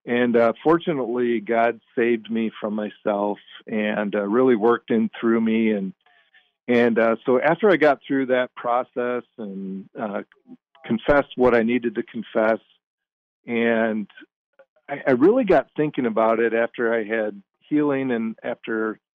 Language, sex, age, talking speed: English, male, 50-69, 145 wpm